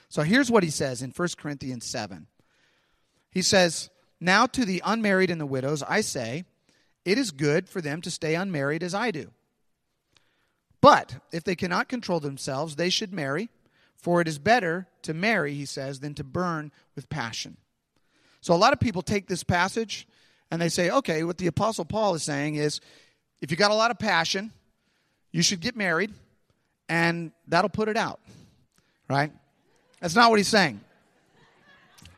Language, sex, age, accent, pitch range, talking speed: English, male, 40-59, American, 145-205 Hz, 175 wpm